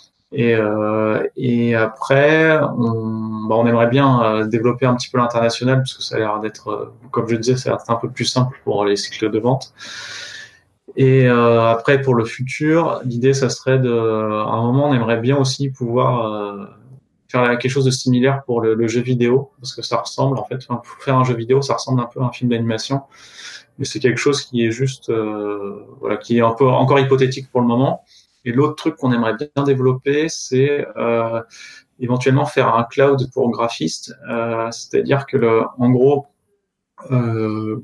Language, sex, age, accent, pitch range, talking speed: French, male, 20-39, French, 115-130 Hz, 195 wpm